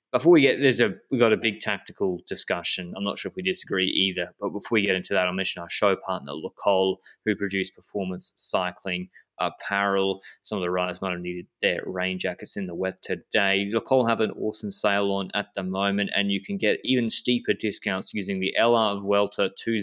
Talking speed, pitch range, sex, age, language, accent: 210 wpm, 90-110 Hz, male, 20-39, English, Australian